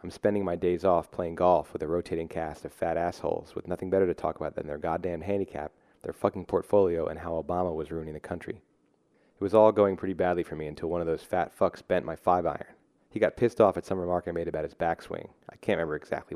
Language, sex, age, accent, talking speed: English, male, 30-49, American, 250 wpm